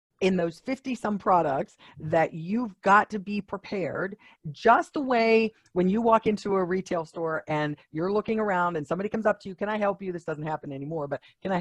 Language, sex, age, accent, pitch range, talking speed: English, female, 50-69, American, 155-210 Hz, 215 wpm